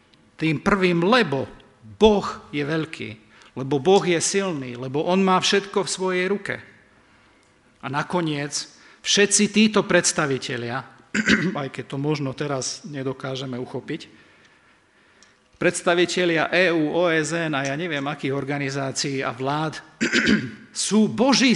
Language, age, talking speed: Slovak, 50-69, 115 wpm